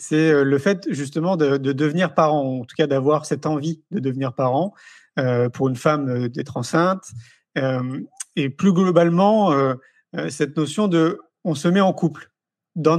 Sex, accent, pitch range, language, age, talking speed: male, French, 150-190 Hz, French, 40-59, 180 wpm